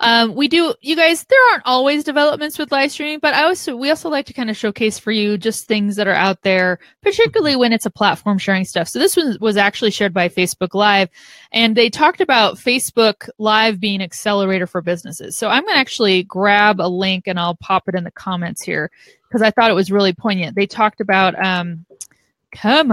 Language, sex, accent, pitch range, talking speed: English, female, American, 185-245 Hz, 215 wpm